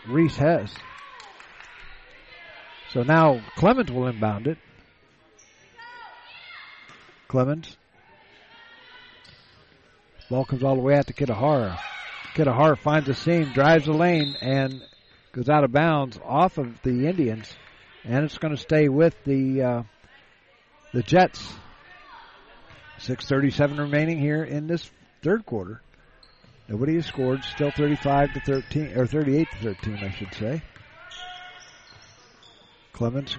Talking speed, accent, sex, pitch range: 115 wpm, American, male, 125-165 Hz